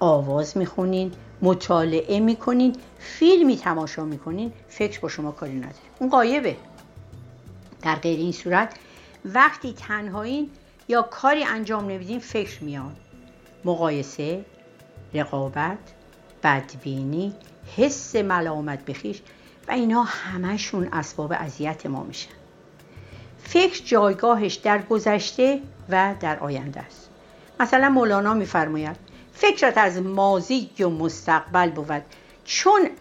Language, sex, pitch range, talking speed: Persian, female, 155-235 Hz, 110 wpm